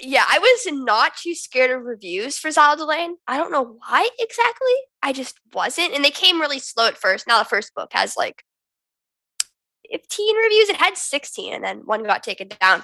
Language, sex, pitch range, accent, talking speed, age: English, female, 215-310 Hz, American, 200 wpm, 10-29